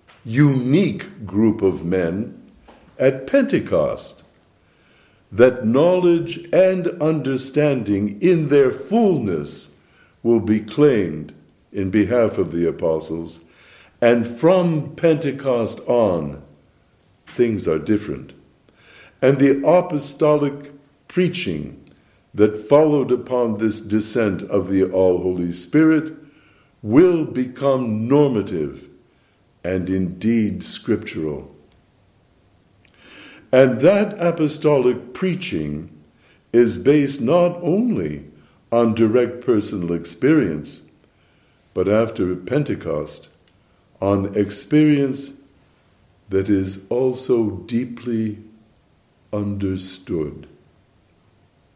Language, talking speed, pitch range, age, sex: English, 80 wpm, 95-140 Hz, 60-79, male